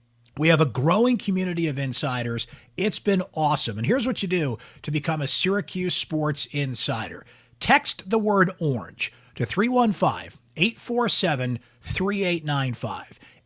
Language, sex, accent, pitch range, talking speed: English, male, American, 125-180 Hz, 120 wpm